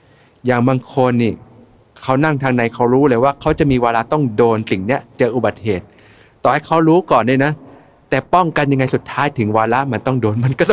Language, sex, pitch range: Thai, male, 110-140 Hz